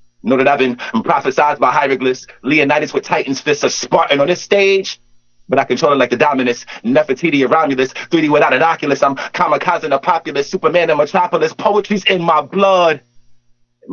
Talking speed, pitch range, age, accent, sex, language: 185 wpm, 120-160 Hz, 30-49, American, male, English